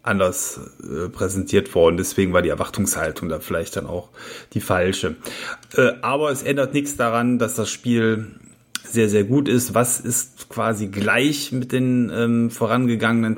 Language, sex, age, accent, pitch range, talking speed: German, male, 30-49, German, 110-125 Hz, 155 wpm